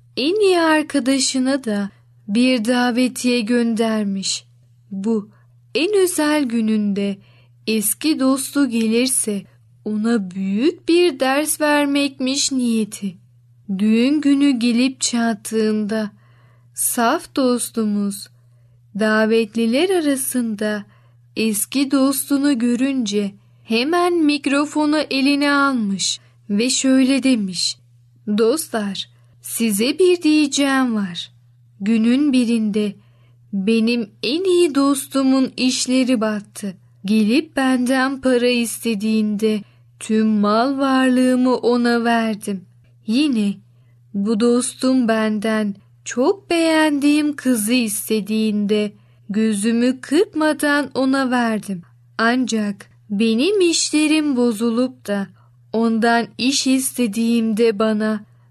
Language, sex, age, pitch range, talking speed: Turkish, female, 10-29, 200-265 Hz, 85 wpm